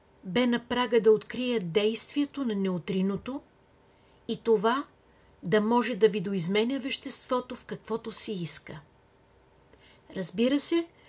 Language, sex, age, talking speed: Bulgarian, female, 50-69, 115 wpm